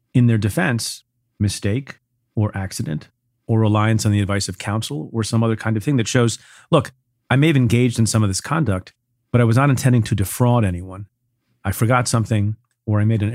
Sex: male